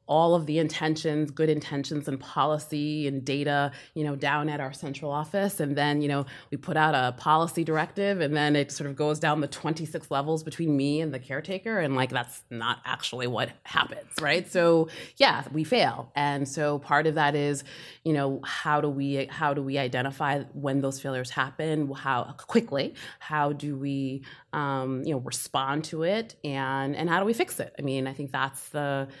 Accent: American